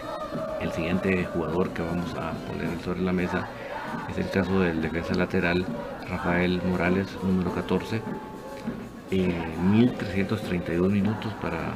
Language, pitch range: Spanish, 90-105 Hz